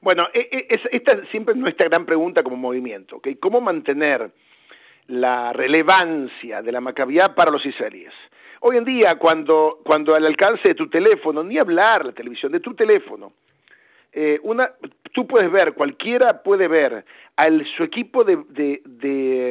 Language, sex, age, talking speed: Spanish, male, 50-69, 155 wpm